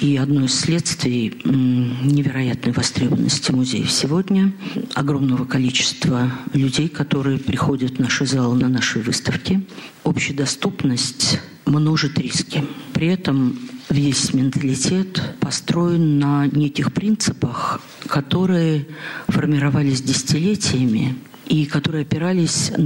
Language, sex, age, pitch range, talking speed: Russian, female, 50-69, 130-155 Hz, 95 wpm